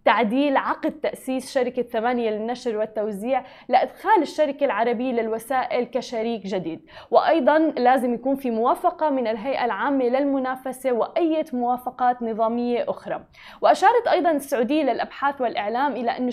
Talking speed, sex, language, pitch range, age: 120 wpm, female, Arabic, 235-295 Hz, 20-39